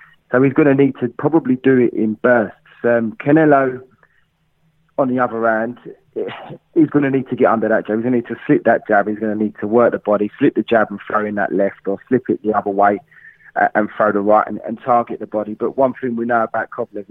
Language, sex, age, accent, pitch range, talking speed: English, male, 30-49, British, 105-130 Hz, 255 wpm